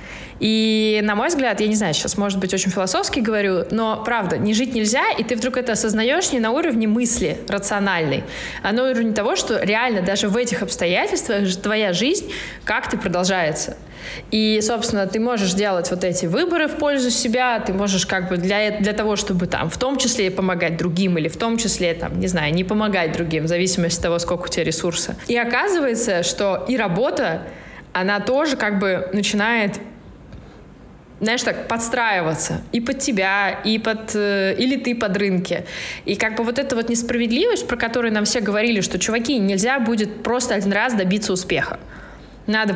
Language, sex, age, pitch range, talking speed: Russian, female, 20-39, 190-235 Hz, 180 wpm